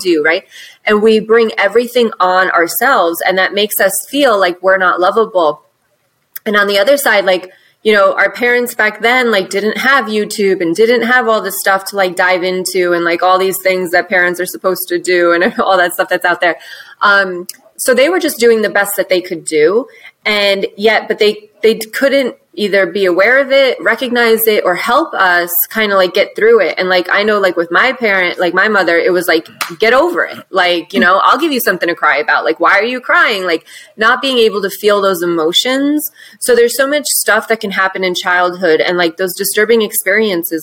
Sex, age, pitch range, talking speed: female, 20-39, 180-225 Hz, 220 wpm